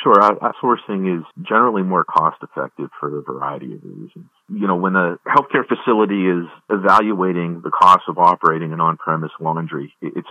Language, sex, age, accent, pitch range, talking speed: English, male, 40-59, American, 80-95 Hz, 155 wpm